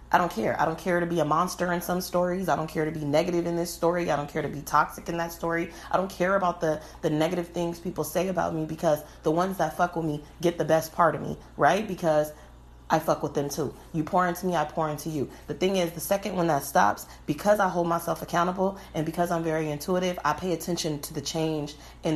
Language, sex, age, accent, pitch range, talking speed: English, female, 30-49, American, 150-175 Hz, 260 wpm